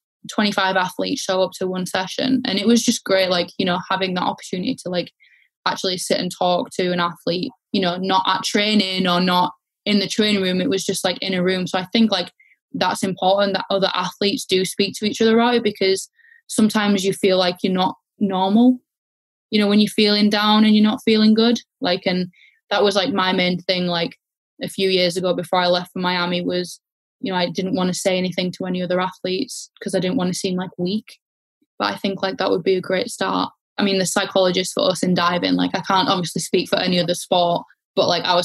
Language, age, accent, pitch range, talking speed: English, 10-29, British, 180-205 Hz, 230 wpm